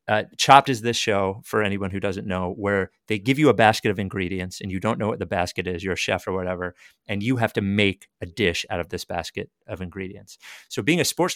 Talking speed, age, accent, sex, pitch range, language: 255 wpm, 30-49, American, male, 100-125 Hz, English